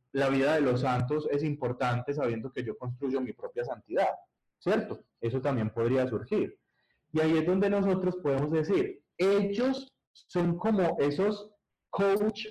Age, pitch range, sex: 20-39, 130-180 Hz, male